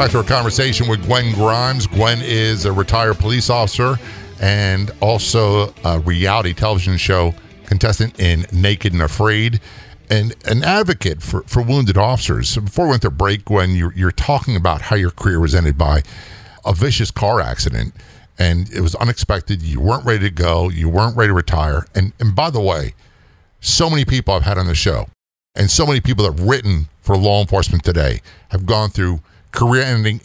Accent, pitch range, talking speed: American, 90-115 Hz, 185 wpm